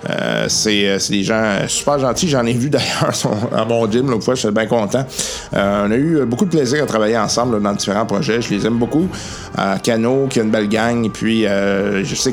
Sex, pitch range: male, 105-130 Hz